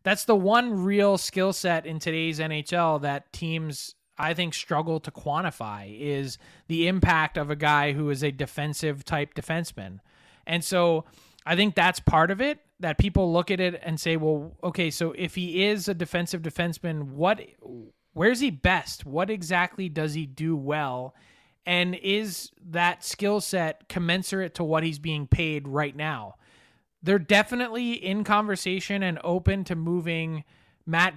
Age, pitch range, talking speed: 20-39, 150-185 Hz, 165 wpm